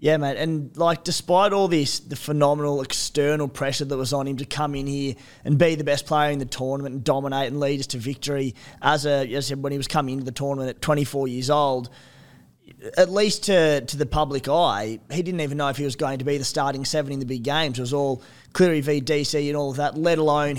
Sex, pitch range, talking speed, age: male, 135-150 Hz, 245 wpm, 20-39